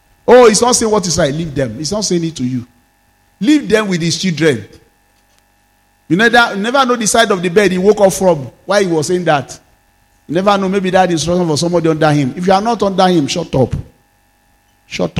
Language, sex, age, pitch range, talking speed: English, male, 50-69, 125-180 Hz, 235 wpm